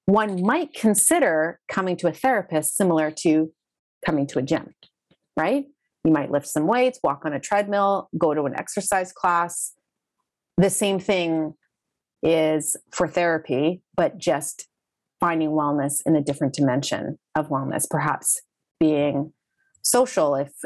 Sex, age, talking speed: female, 30-49, 140 wpm